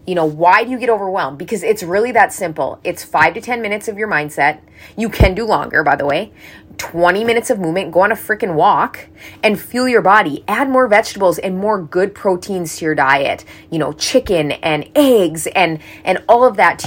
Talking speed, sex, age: 215 wpm, female, 20-39